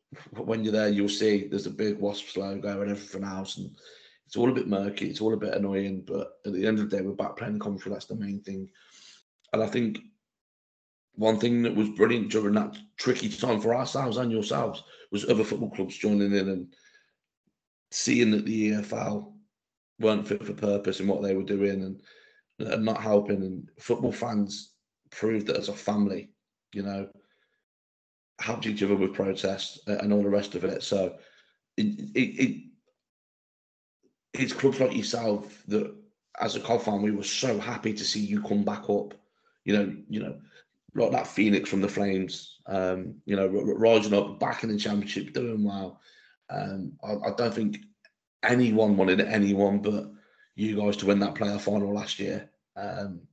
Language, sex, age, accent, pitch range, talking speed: English, male, 30-49, British, 100-110 Hz, 185 wpm